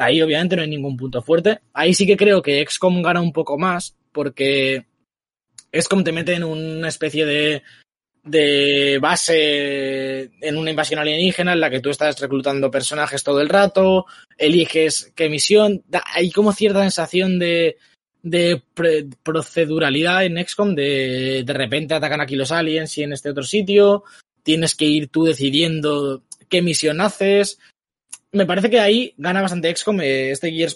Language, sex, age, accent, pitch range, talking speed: Spanish, male, 20-39, Spanish, 140-185 Hz, 165 wpm